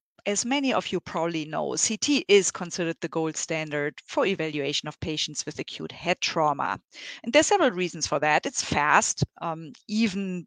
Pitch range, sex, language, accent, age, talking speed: 150-175 Hz, female, English, German, 30-49, 170 wpm